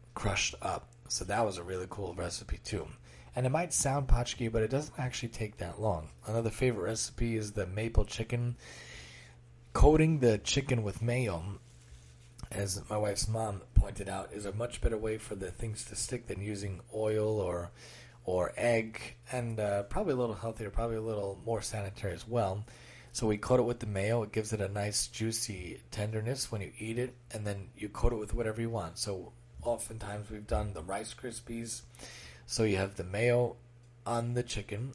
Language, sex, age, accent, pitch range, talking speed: English, male, 30-49, American, 105-125 Hz, 190 wpm